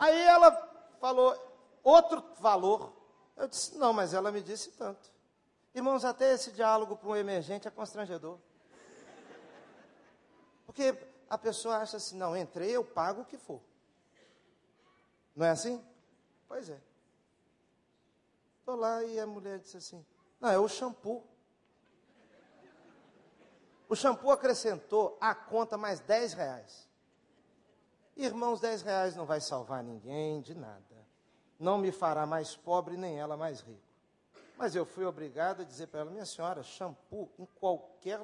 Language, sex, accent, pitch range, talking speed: Portuguese, male, Brazilian, 160-235 Hz, 140 wpm